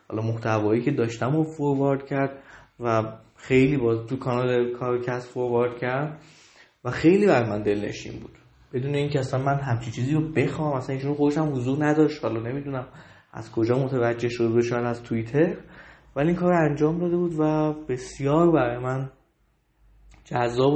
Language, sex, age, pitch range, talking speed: Persian, male, 20-39, 120-150 Hz, 160 wpm